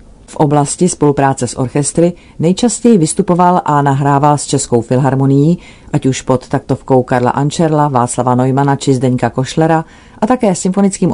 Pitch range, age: 125-155 Hz, 40-59